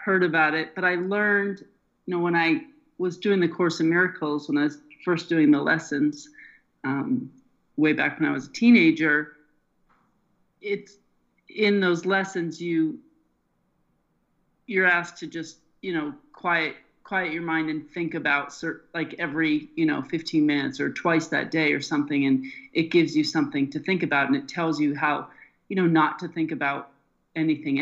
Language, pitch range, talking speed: English, 150-205 Hz, 175 wpm